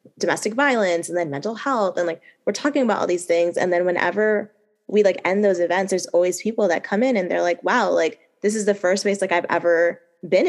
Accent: American